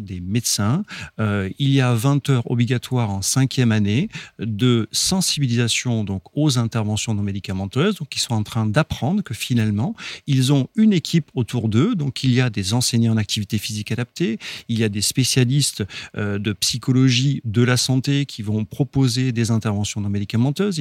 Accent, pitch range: French, 115-150 Hz